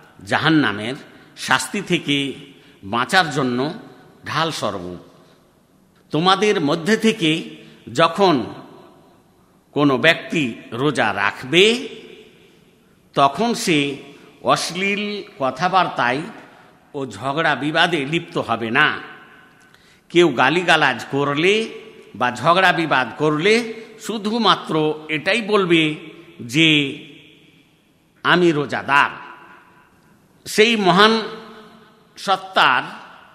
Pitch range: 145-205 Hz